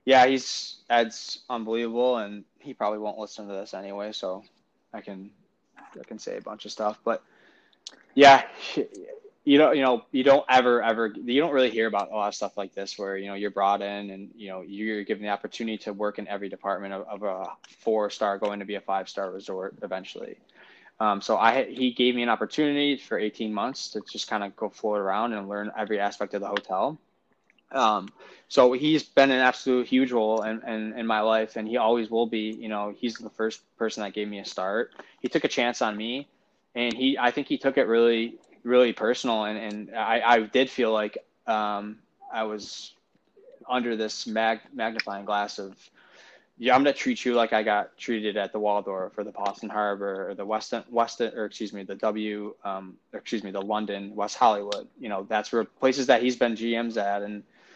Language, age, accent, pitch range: English, 20-39, American, 105-120 Hz